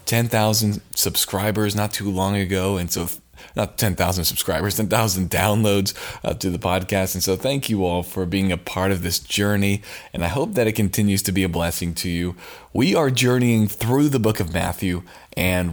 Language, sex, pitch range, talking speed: English, male, 90-120 Hz, 190 wpm